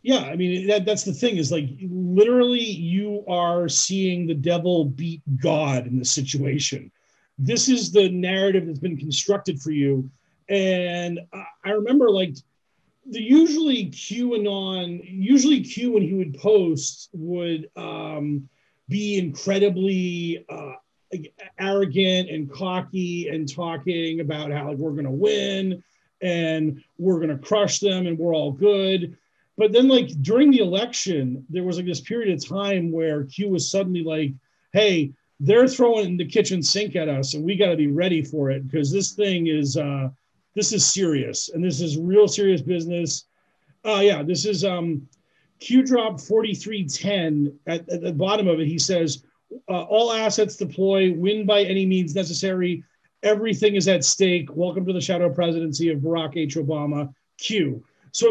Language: English